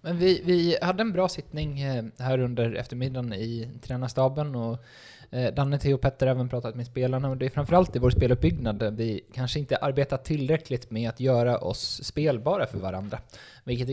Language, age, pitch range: Swedish, 20-39, 115-135 Hz